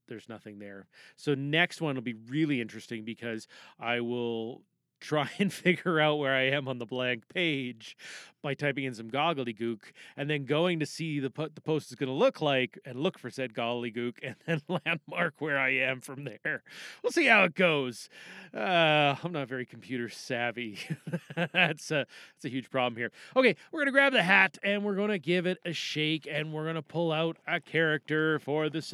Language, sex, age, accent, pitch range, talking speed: English, male, 30-49, American, 125-160 Hz, 210 wpm